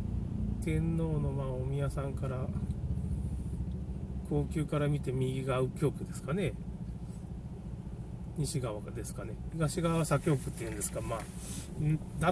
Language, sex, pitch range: Japanese, male, 110-165 Hz